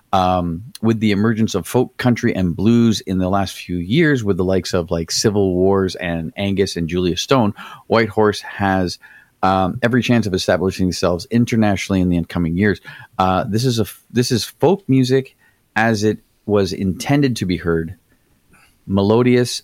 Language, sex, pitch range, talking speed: English, male, 90-115 Hz, 170 wpm